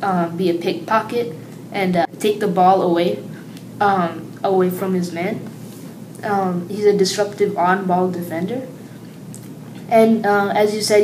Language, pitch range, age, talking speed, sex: English, 180-210 Hz, 10-29, 145 wpm, female